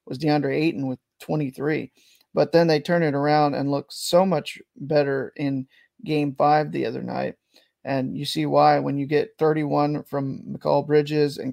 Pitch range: 145-160 Hz